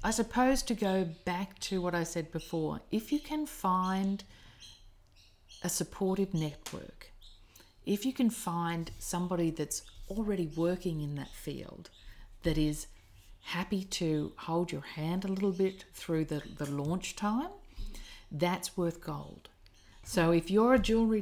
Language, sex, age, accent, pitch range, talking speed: English, female, 40-59, Australian, 140-175 Hz, 145 wpm